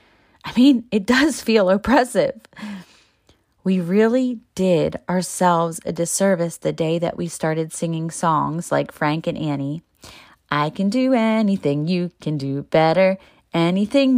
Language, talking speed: English, 135 wpm